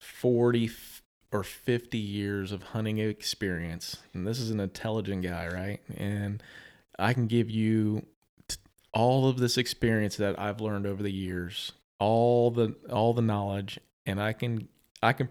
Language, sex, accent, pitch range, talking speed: English, male, American, 105-120 Hz, 155 wpm